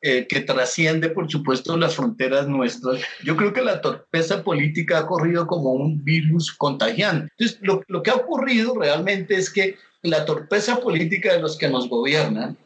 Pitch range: 160-215 Hz